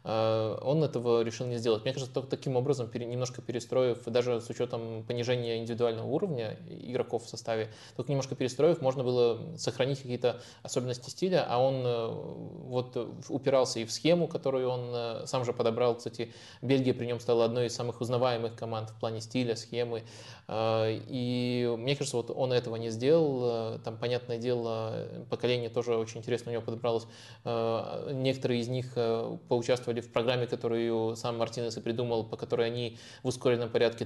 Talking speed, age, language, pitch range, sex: 160 wpm, 20-39, Russian, 115-125 Hz, male